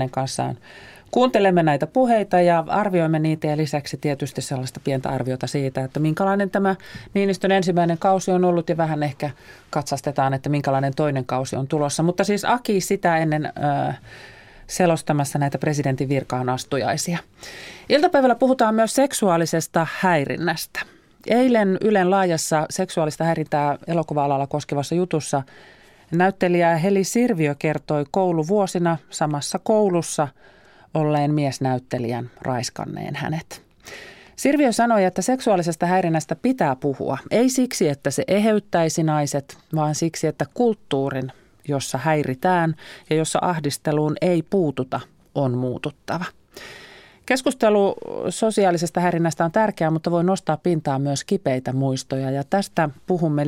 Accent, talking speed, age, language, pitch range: native, 120 wpm, 30-49, Finnish, 140-185 Hz